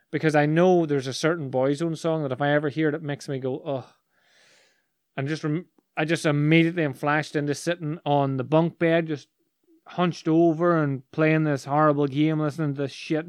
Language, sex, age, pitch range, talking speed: English, male, 30-49, 130-155 Hz, 205 wpm